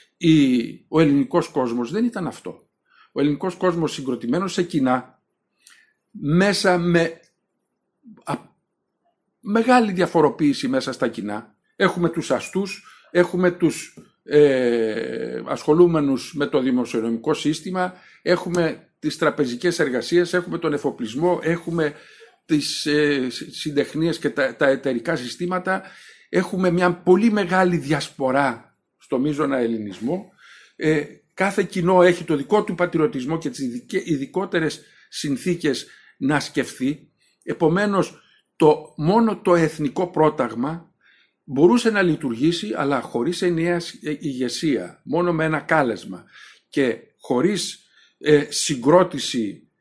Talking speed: 105 wpm